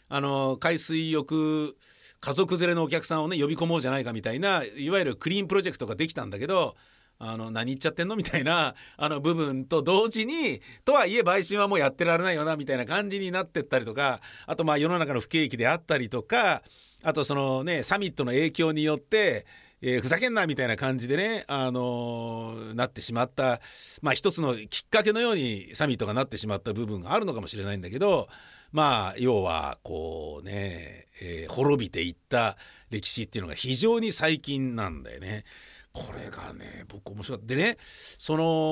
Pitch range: 110-165 Hz